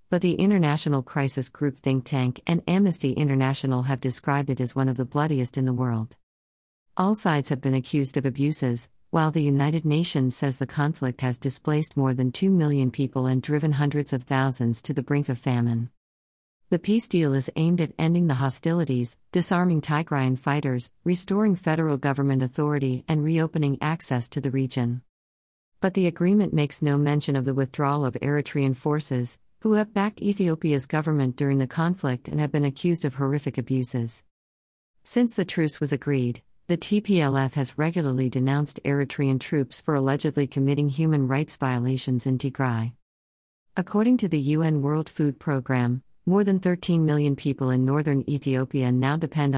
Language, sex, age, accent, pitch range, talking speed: English, female, 50-69, American, 130-155 Hz, 165 wpm